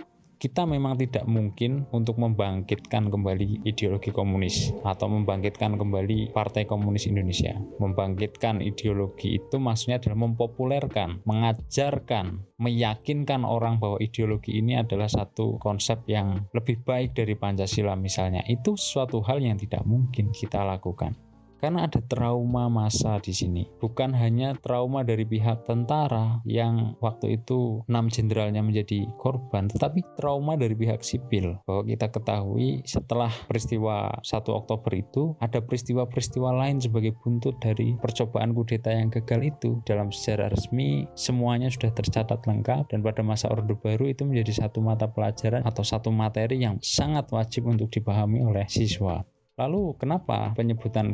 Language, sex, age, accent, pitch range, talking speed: Indonesian, male, 20-39, native, 105-120 Hz, 135 wpm